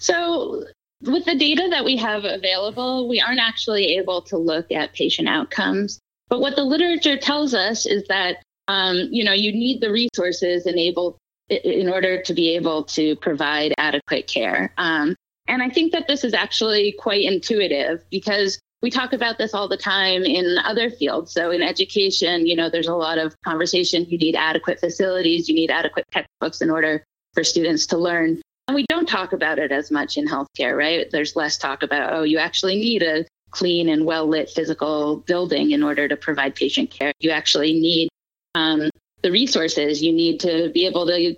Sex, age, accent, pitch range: female, 20-39, American, 160-210 Hz